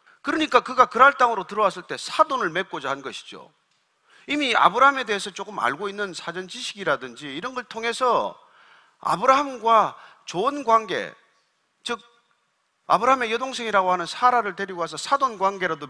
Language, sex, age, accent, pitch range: Korean, male, 40-59, native, 190-260 Hz